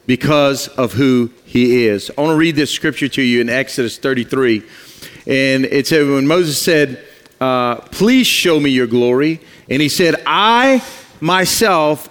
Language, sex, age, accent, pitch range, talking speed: English, male, 40-59, American, 155-225 Hz, 165 wpm